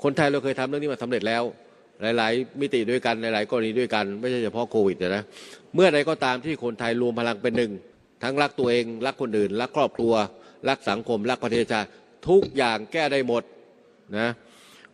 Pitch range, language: 110-135 Hz, Thai